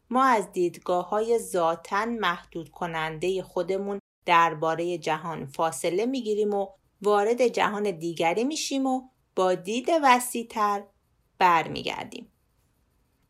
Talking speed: 100 wpm